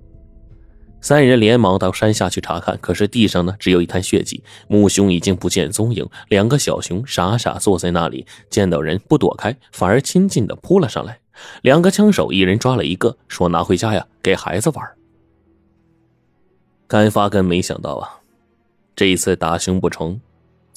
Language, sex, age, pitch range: Chinese, male, 20-39, 90-110 Hz